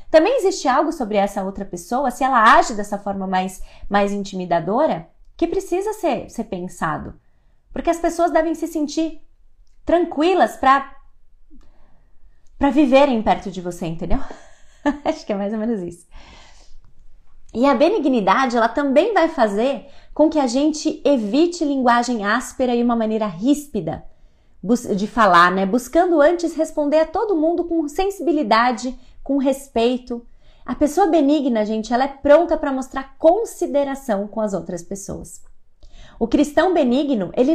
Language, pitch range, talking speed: Portuguese, 205-300 Hz, 140 wpm